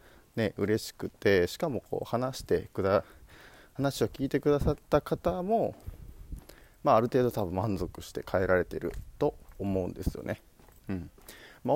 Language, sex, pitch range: Japanese, male, 95-130 Hz